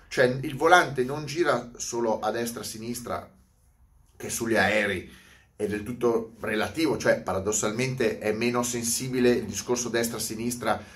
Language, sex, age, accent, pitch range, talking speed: Italian, male, 30-49, native, 110-155 Hz, 125 wpm